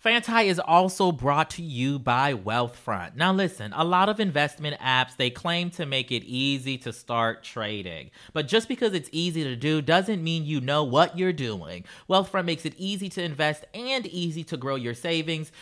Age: 30-49